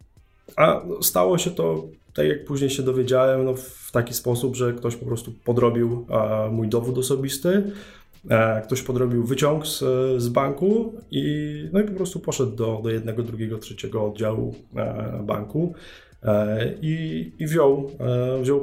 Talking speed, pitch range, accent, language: 135 wpm, 110-130 Hz, native, Polish